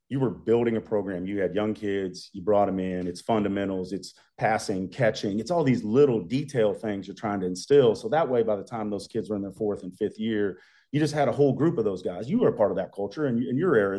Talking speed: 270 wpm